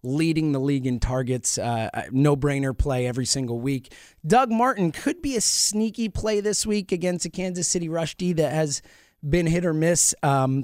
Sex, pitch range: male, 130-185 Hz